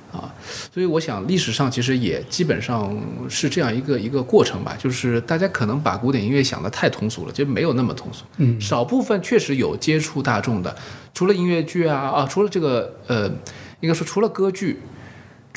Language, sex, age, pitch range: Chinese, male, 20-39, 110-145 Hz